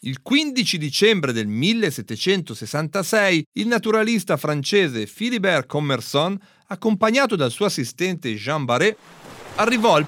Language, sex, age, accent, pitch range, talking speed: Italian, male, 40-59, native, 135-210 Hz, 105 wpm